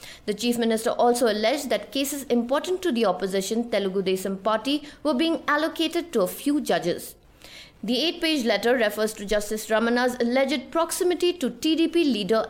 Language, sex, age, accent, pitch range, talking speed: English, female, 20-39, Indian, 205-280 Hz, 160 wpm